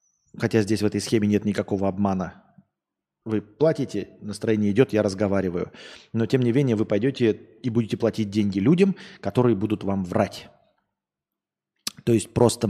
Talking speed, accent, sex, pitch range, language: 150 wpm, native, male, 105-135 Hz, Russian